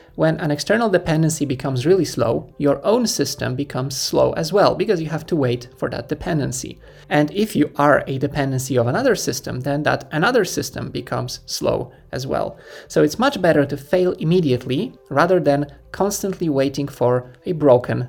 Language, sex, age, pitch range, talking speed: English, male, 20-39, 135-165 Hz, 175 wpm